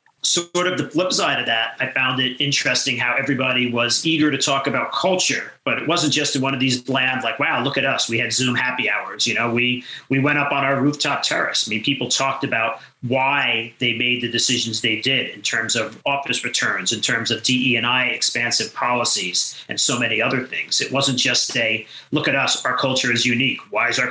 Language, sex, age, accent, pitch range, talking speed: English, male, 40-59, American, 115-135 Hz, 225 wpm